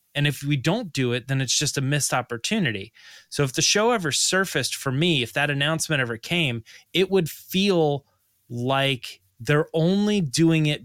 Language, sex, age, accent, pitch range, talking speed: English, male, 20-39, American, 115-155 Hz, 185 wpm